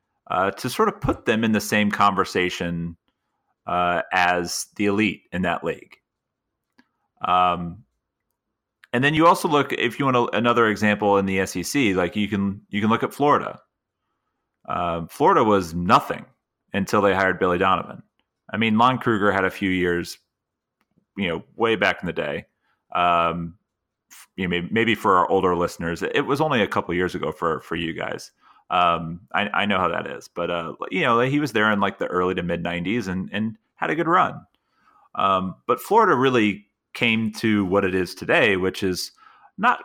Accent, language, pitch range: American, English, 90-105 Hz